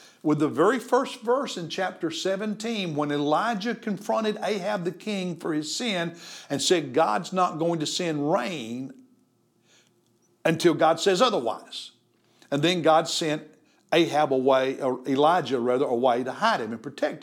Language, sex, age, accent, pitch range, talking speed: English, male, 50-69, American, 155-215 Hz, 155 wpm